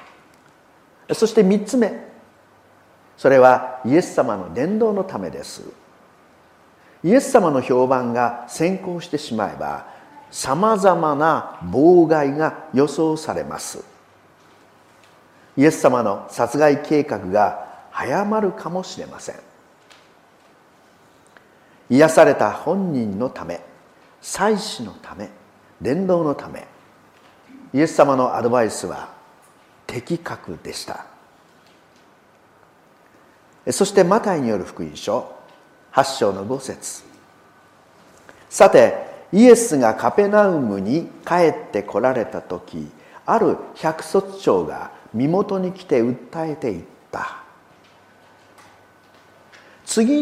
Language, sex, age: Japanese, male, 50-69